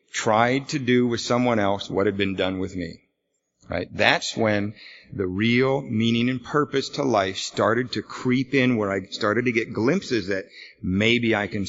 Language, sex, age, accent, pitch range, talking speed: English, male, 50-69, American, 100-130 Hz, 185 wpm